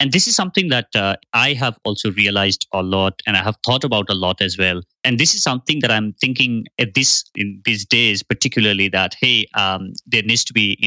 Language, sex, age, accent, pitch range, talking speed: English, male, 20-39, Indian, 105-130 Hz, 230 wpm